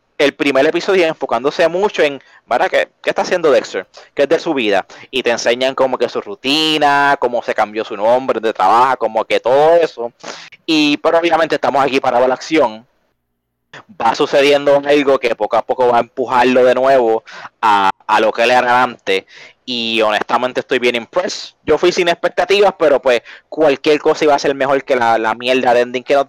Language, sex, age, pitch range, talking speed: English, male, 20-39, 125-155 Hz, 195 wpm